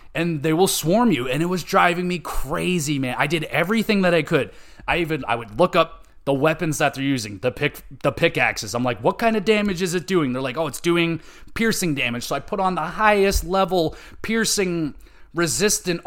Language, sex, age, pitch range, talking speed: English, male, 30-49, 130-170 Hz, 215 wpm